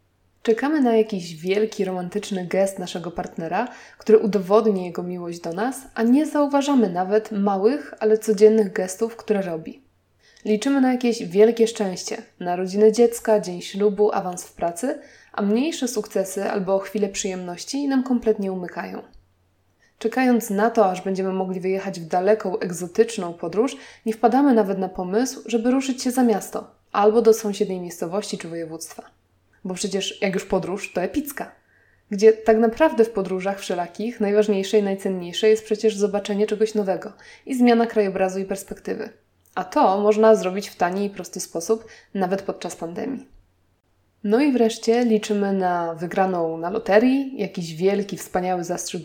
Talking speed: 150 wpm